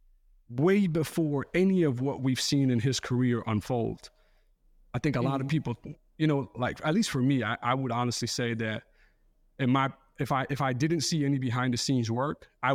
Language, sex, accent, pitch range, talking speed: English, male, American, 120-155 Hz, 205 wpm